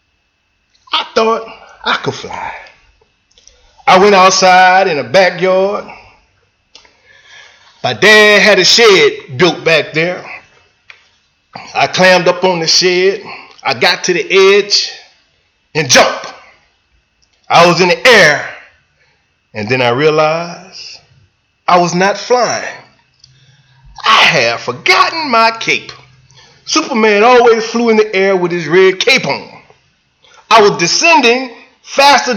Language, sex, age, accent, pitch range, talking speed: English, male, 30-49, American, 170-270 Hz, 120 wpm